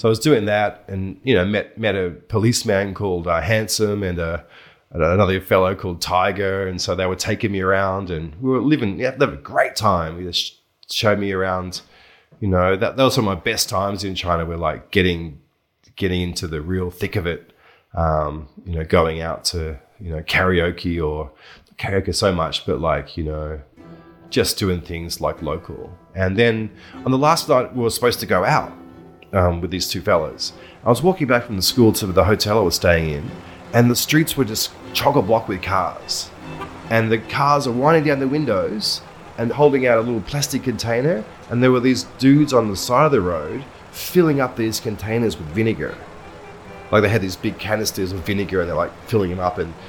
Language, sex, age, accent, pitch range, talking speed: English, male, 30-49, Australian, 90-115 Hz, 210 wpm